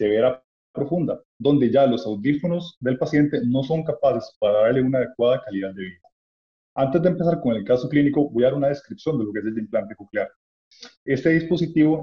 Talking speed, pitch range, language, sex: 195 wpm, 120-150 Hz, Spanish, male